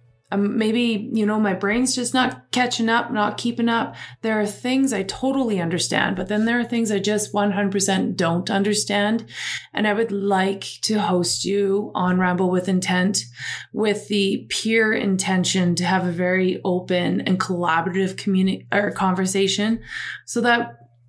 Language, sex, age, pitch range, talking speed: English, female, 20-39, 175-210 Hz, 155 wpm